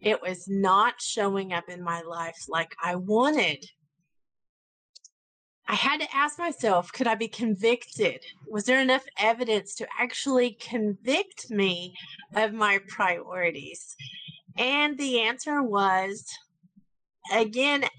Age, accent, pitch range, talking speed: 30-49, American, 190-255 Hz, 120 wpm